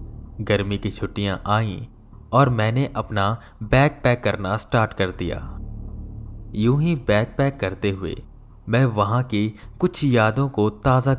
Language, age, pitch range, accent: Hindi, 20-39, 100-120 Hz, native